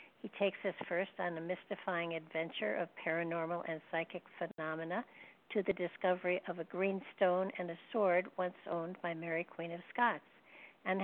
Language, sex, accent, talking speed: English, female, American, 170 wpm